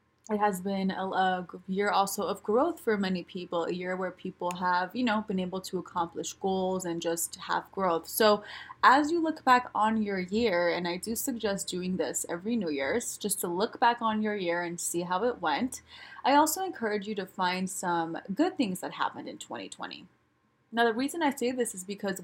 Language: English